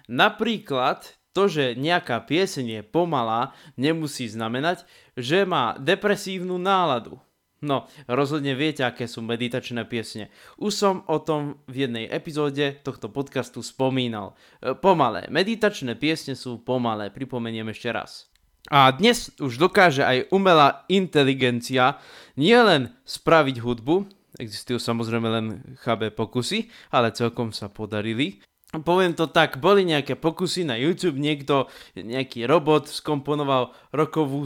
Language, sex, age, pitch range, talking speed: Slovak, male, 20-39, 125-185 Hz, 120 wpm